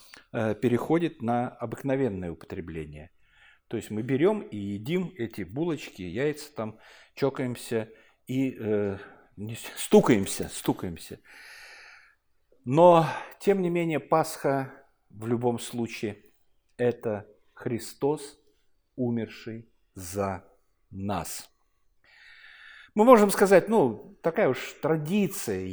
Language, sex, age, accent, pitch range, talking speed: Russian, male, 50-69, native, 110-160 Hz, 95 wpm